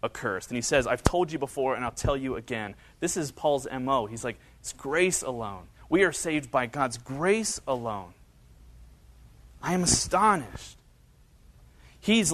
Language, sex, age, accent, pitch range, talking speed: English, male, 30-49, American, 120-160 Hz, 155 wpm